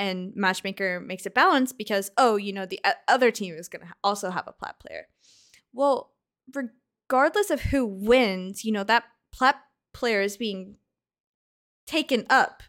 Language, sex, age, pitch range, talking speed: English, female, 10-29, 195-260 Hz, 160 wpm